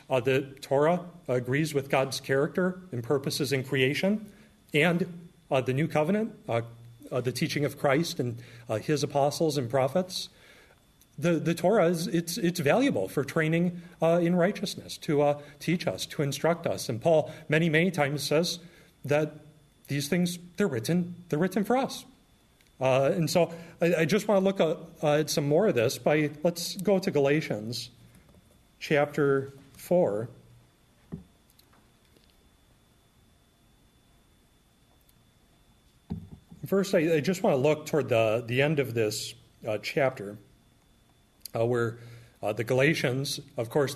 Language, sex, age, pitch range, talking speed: English, male, 40-59, 125-165 Hz, 145 wpm